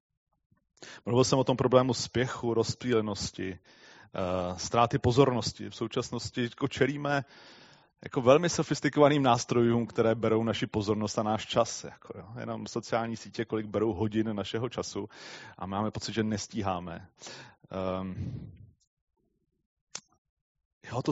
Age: 30-49